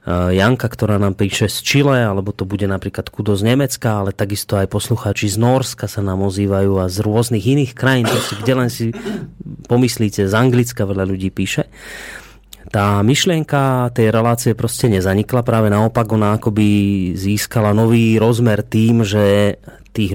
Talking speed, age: 160 wpm, 30-49